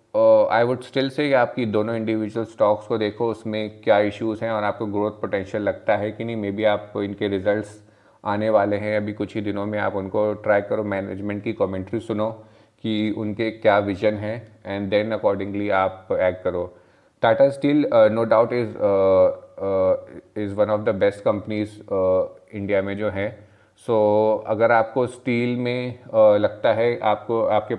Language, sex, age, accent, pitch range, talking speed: Hindi, male, 30-49, native, 105-115 Hz, 175 wpm